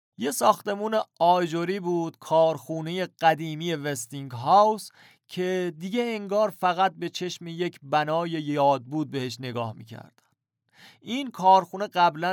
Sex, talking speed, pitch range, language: male, 115 wpm, 135-180 Hz, Persian